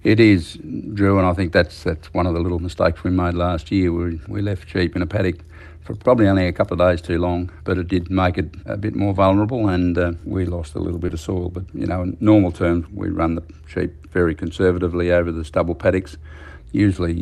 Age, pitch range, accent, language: 60-79, 80-90 Hz, Australian, English